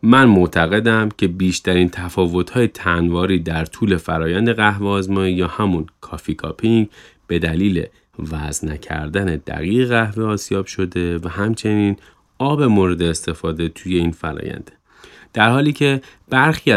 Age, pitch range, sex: 30-49, 85-105 Hz, male